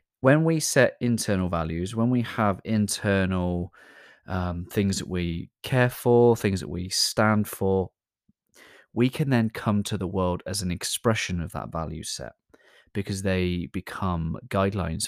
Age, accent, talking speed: 30-49, British, 150 wpm